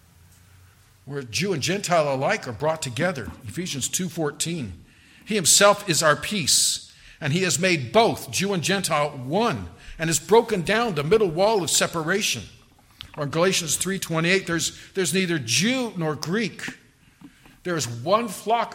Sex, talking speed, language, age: male, 160 wpm, English, 50-69